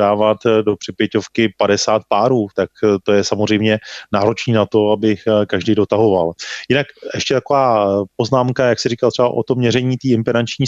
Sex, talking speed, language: male, 155 wpm, Czech